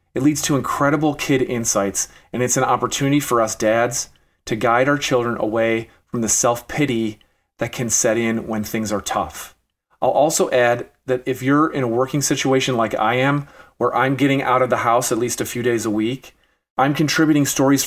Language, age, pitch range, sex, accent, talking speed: English, 40-59, 110-130 Hz, male, American, 200 wpm